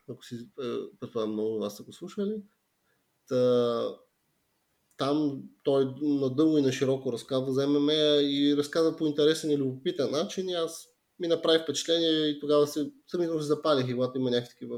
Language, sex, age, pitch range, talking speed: Bulgarian, male, 30-49, 125-160 Hz, 160 wpm